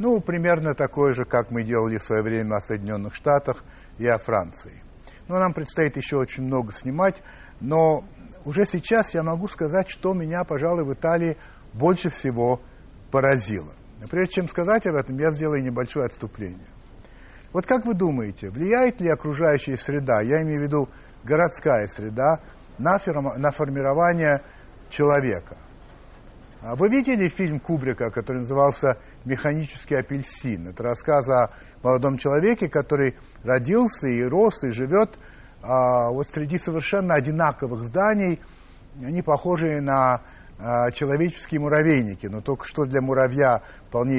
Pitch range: 120-165 Hz